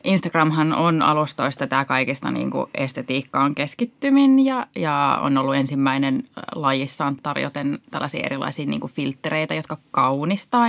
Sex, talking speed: female, 120 wpm